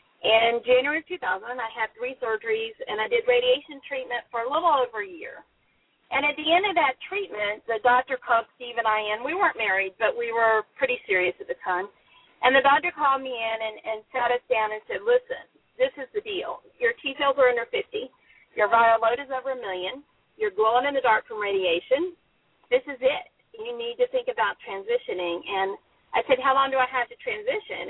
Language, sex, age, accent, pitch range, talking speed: English, female, 40-59, American, 220-345 Hz, 215 wpm